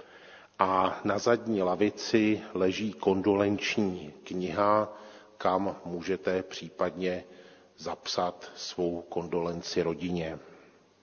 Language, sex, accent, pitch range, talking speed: Czech, male, native, 95-110 Hz, 75 wpm